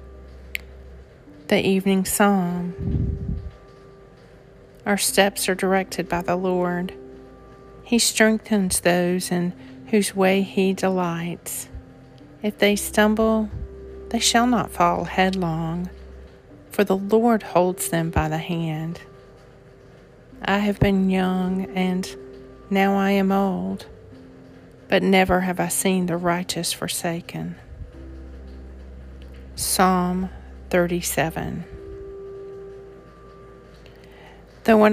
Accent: American